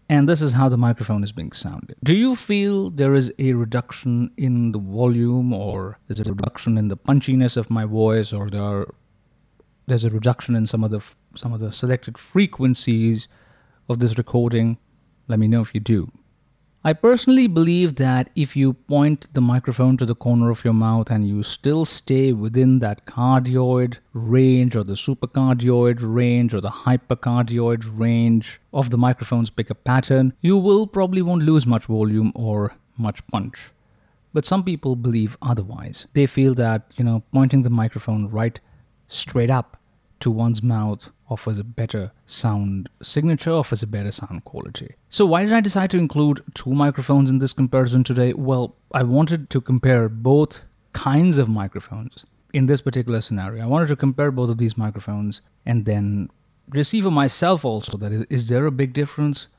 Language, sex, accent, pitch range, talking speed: English, male, Indian, 115-140 Hz, 175 wpm